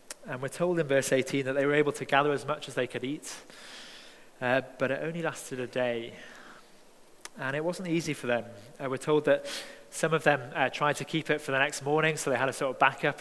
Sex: male